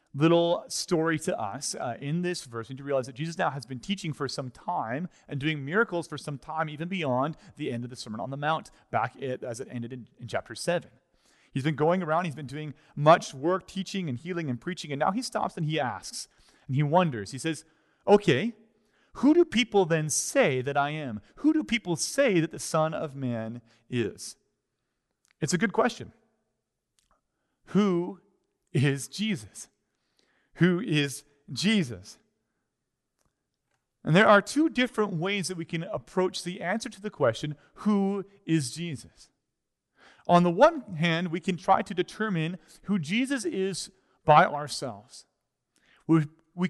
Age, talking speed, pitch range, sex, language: 30-49, 175 wpm, 145-190 Hz, male, English